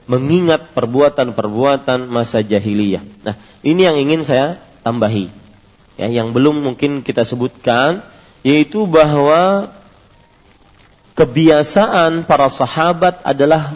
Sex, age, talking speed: male, 40-59, 95 wpm